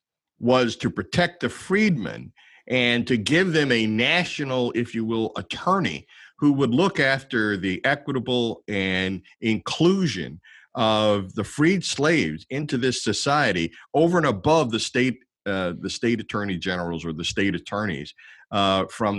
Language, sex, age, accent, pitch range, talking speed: English, male, 50-69, American, 95-130 Hz, 145 wpm